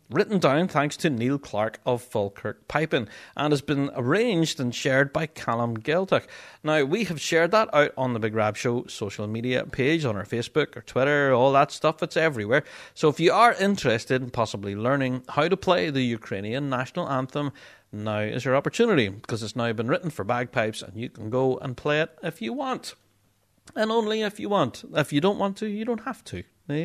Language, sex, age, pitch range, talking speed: English, male, 30-49, 110-150 Hz, 210 wpm